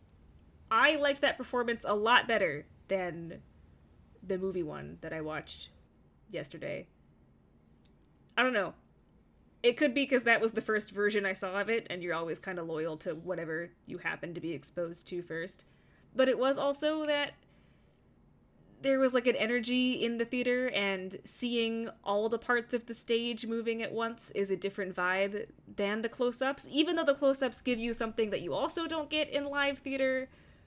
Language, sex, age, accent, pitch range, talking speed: English, female, 20-39, American, 175-255 Hz, 180 wpm